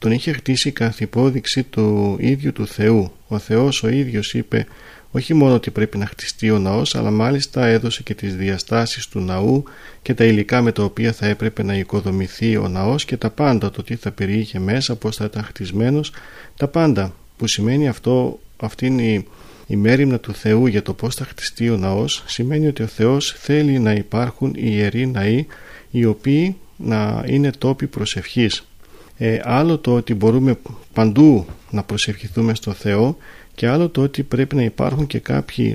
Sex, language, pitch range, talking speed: male, Greek, 105-130 Hz, 175 wpm